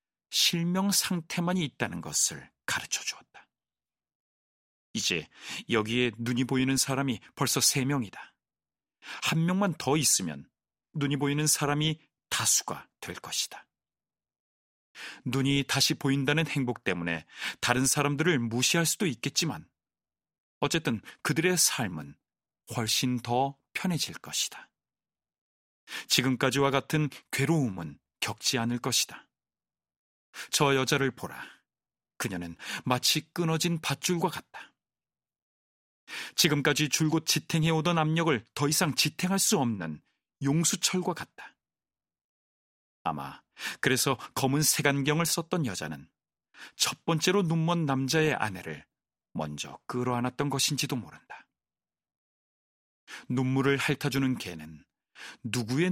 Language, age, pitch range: Korean, 40-59, 115-155 Hz